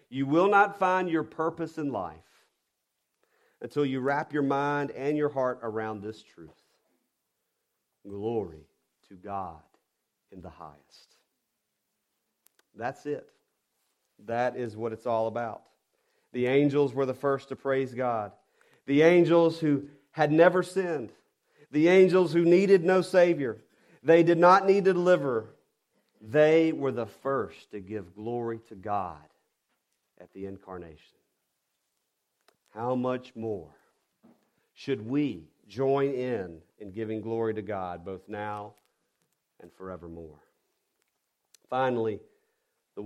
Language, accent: English, American